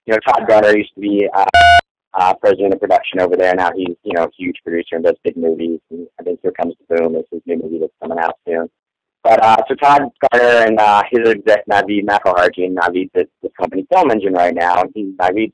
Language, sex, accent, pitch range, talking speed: English, male, American, 95-110 Hz, 235 wpm